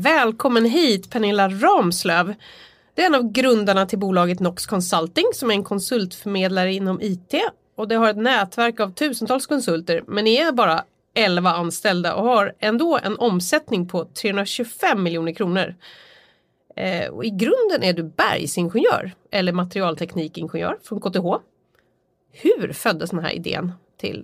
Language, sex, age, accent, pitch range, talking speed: Swedish, female, 30-49, native, 180-240 Hz, 145 wpm